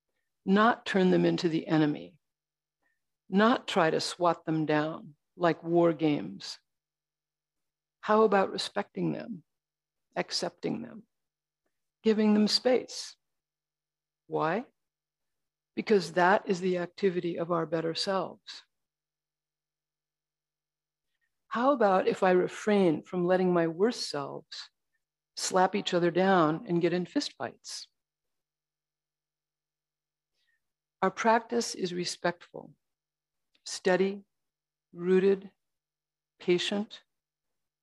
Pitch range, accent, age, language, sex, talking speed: 170-215 Hz, American, 60-79, English, female, 95 wpm